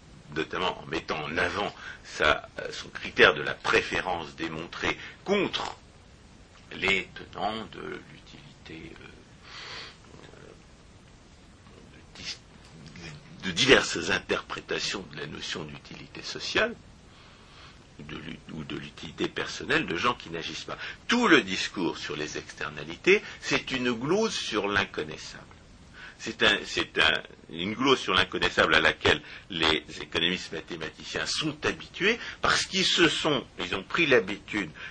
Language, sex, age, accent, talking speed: French, male, 60-79, French, 120 wpm